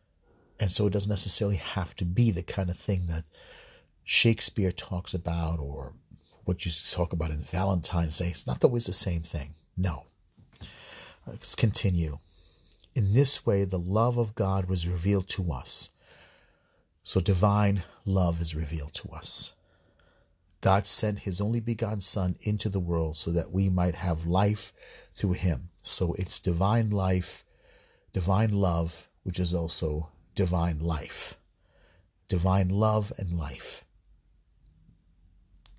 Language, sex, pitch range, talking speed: English, male, 85-100 Hz, 140 wpm